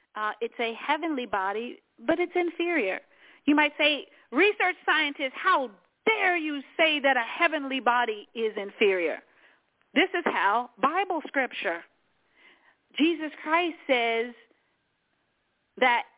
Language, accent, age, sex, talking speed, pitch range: English, American, 40-59, female, 120 wpm, 235-315 Hz